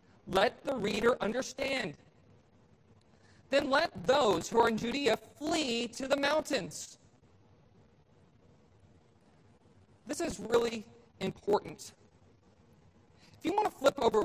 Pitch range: 210-275 Hz